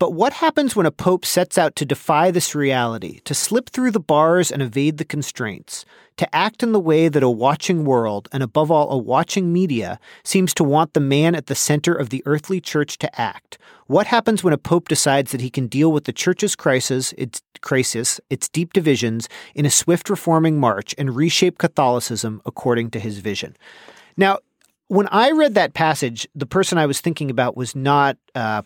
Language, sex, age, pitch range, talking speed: English, male, 40-59, 130-170 Hz, 200 wpm